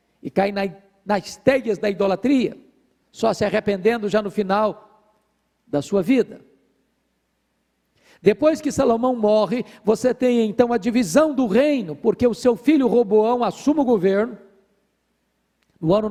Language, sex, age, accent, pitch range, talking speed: Portuguese, male, 50-69, Brazilian, 195-245 Hz, 140 wpm